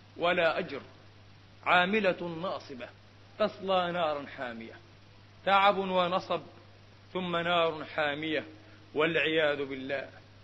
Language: Arabic